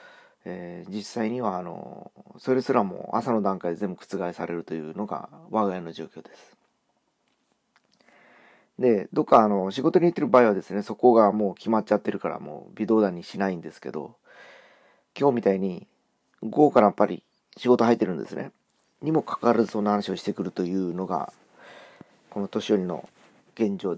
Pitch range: 95-130 Hz